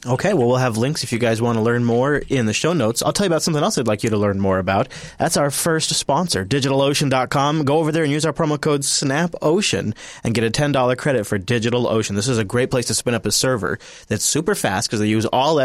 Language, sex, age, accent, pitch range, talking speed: English, male, 30-49, American, 110-140 Hz, 255 wpm